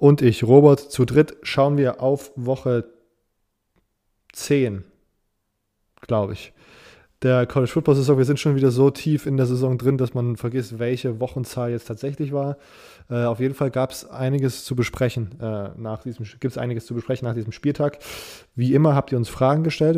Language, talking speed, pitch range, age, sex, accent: German, 165 wpm, 115-135 Hz, 20-39, male, German